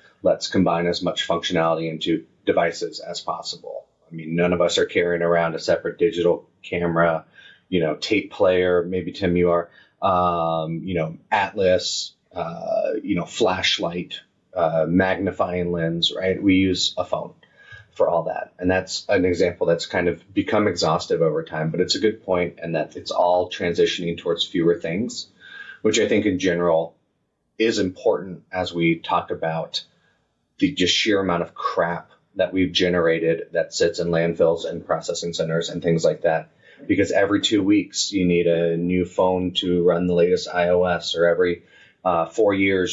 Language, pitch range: English, 85-95 Hz